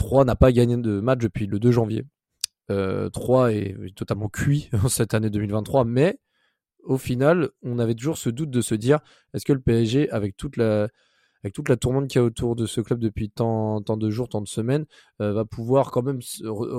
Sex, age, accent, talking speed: male, 20-39, French, 220 wpm